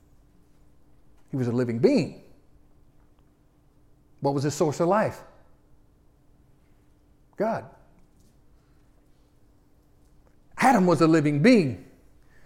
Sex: male